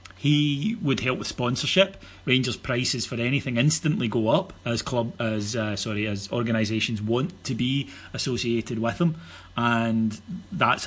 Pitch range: 105-135 Hz